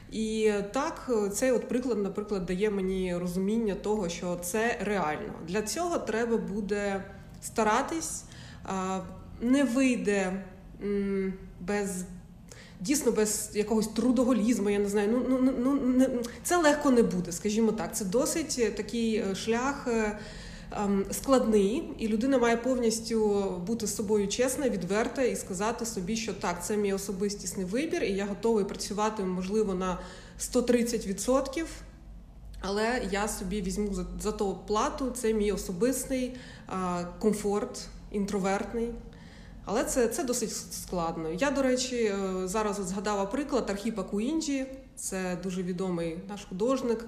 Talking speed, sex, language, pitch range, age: 125 wpm, female, Ukrainian, 190-235 Hz, 30-49